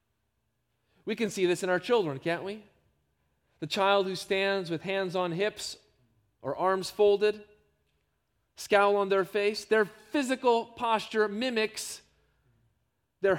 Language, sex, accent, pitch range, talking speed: English, male, American, 150-210 Hz, 130 wpm